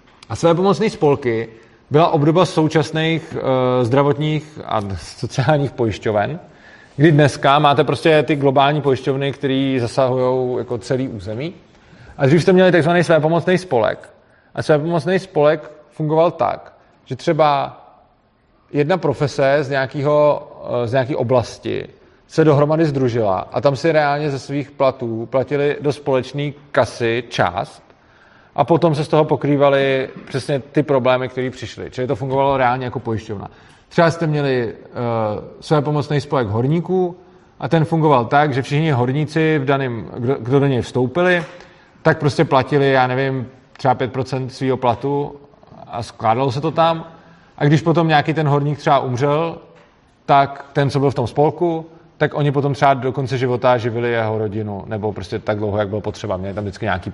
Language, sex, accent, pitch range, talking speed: Czech, male, native, 125-155 Hz, 160 wpm